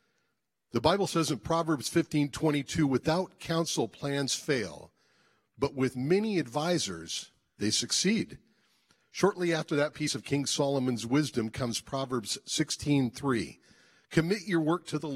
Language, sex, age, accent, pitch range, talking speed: English, male, 50-69, American, 115-165 Hz, 140 wpm